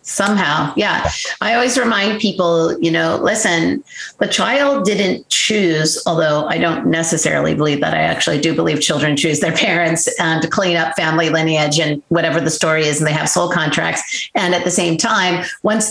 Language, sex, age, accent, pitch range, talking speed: English, female, 40-59, American, 160-185 Hz, 185 wpm